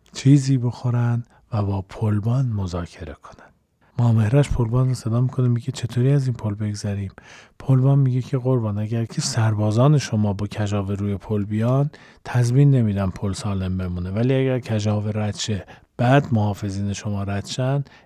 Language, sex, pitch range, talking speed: Persian, male, 105-125 Hz, 150 wpm